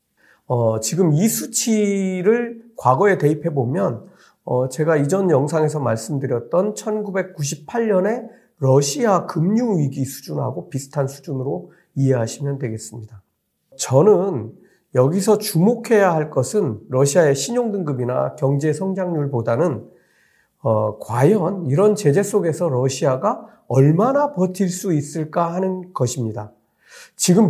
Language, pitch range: Korean, 135-205 Hz